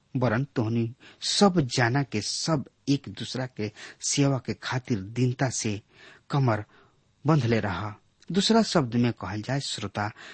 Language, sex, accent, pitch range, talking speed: English, male, Indian, 110-145 Hz, 130 wpm